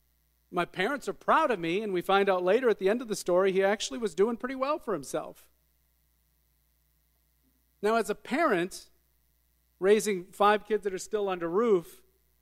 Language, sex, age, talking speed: English, male, 40-59, 180 wpm